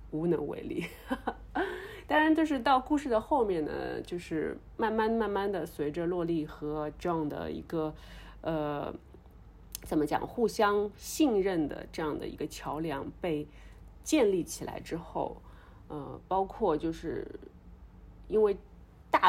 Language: Chinese